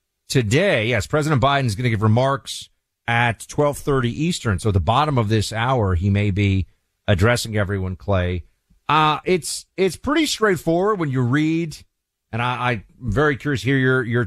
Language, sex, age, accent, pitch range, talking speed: English, male, 50-69, American, 100-130 Hz, 175 wpm